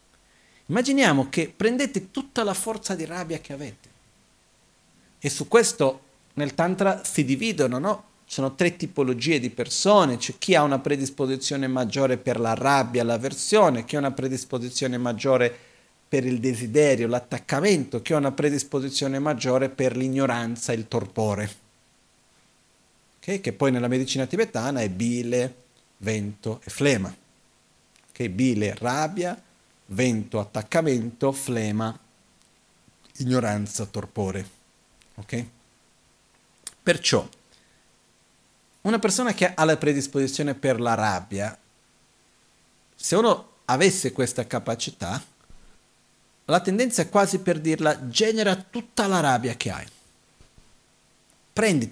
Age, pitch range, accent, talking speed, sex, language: 40-59, 120-165 Hz, native, 120 wpm, male, Italian